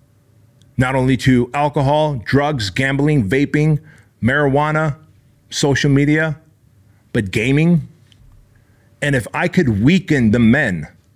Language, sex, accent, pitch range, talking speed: English, male, American, 110-140 Hz, 100 wpm